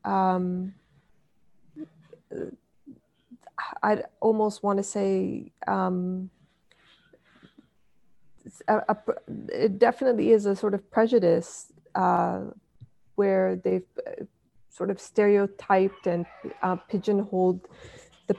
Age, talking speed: 30-49, 70 wpm